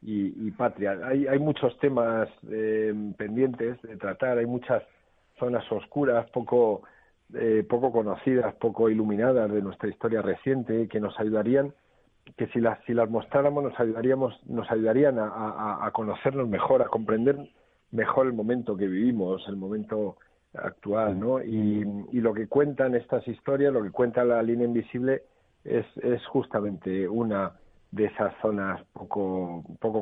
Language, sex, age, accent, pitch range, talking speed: Spanish, male, 50-69, Spanish, 105-120 Hz, 150 wpm